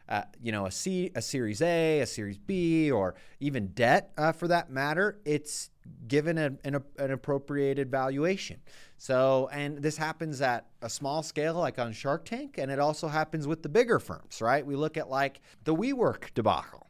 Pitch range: 120-160 Hz